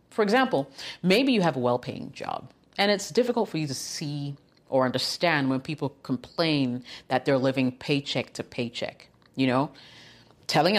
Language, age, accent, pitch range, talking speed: English, 30-49, American, 125-160 Hz, 160 wpm